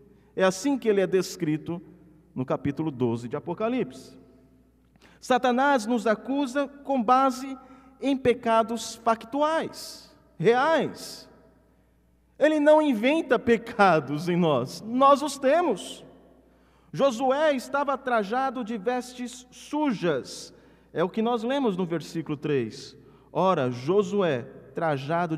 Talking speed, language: 110 wpm, Portuguese